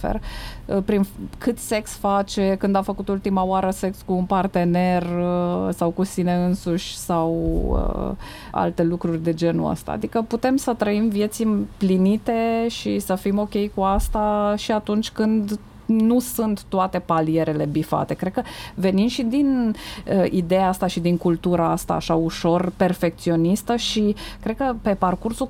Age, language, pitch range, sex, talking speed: 20-39, Romanian, 170-210 Hz, female, 150 wpm